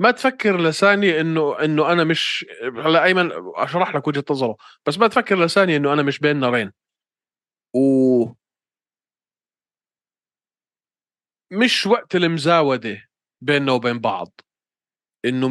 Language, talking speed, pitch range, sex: Arabic, 110 wpm, 120-160 Hz, male